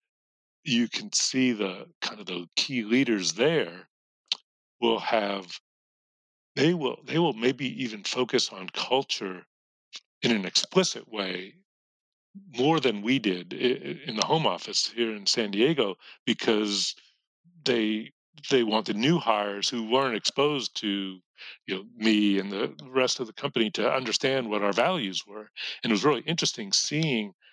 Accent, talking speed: American, 150 wpm